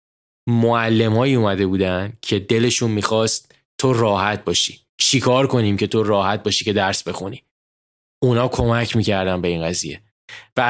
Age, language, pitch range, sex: 20-39, Persian, 100-120 Hz, male